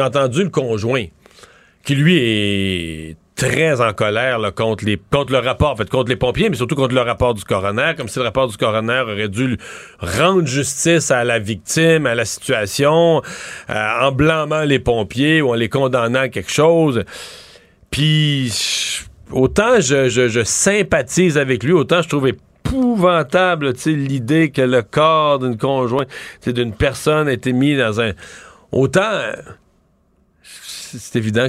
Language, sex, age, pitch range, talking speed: French, male, 40-59, 115-145 Hz, 165 wpm